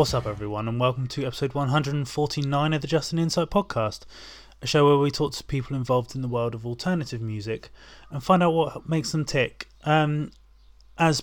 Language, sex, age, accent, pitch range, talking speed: English, male, 20-39, British, 120-150 Hz, 210 wpm